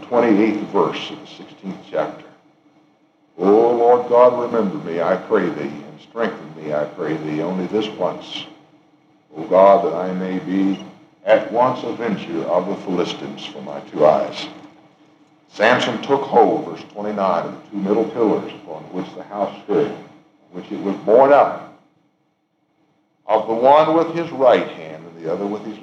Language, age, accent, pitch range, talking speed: English, 60-79, American, 105-155 Hz, 170 wpm